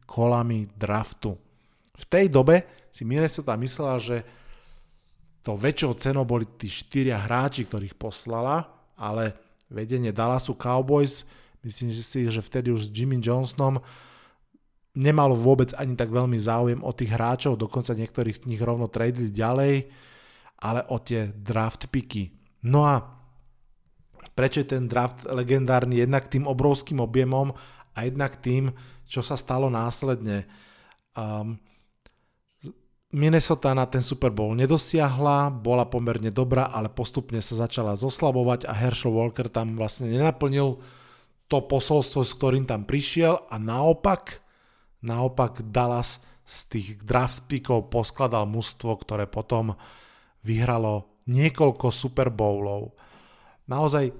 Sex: male